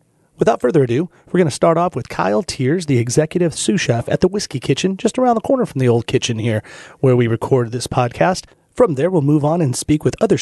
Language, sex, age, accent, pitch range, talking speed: English, male, 30-49, American, 120-165 Hz, 240 wpm